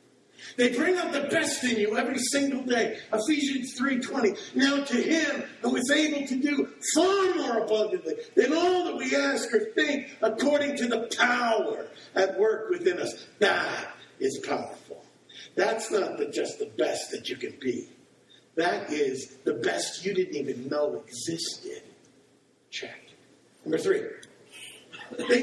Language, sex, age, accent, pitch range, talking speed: English, male, 50-69, American, 220-330 Hz, 150 wpm